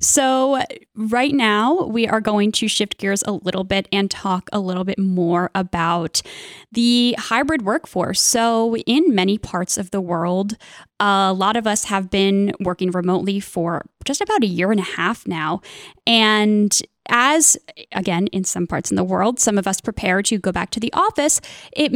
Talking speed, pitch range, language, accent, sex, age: 180 wpm, 190-245 Hz, English, American, female, 10-29